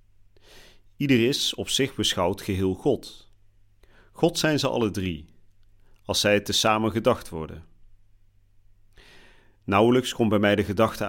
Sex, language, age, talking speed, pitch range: male, Dutch, 40-59, 135 wpm, 100-115 Hz